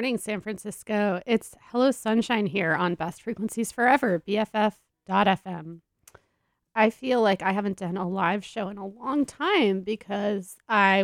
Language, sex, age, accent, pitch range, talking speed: English, female, 30-49, American, 200-240 Hz, 145 wpm